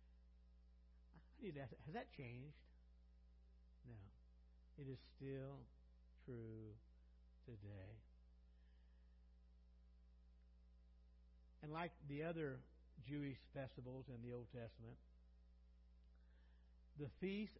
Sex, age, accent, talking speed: male, 60-79, American, 70 wpm